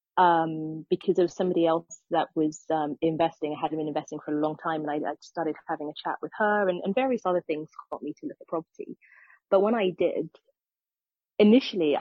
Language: English